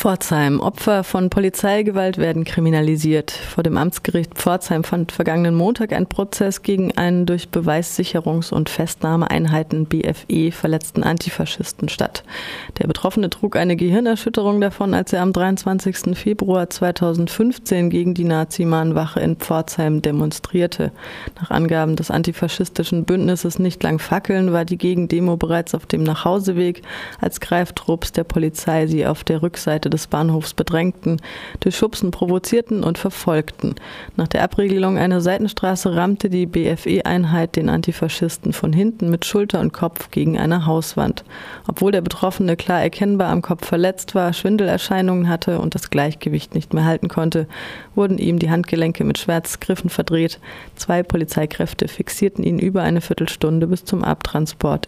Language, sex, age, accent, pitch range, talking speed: German, female, 30-49, German, 165-190 Hz, 140 wpm